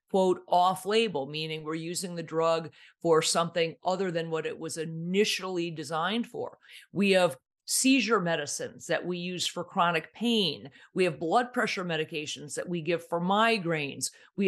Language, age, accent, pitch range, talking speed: English, 50-69, American, 170-230 Hz, 160 wpm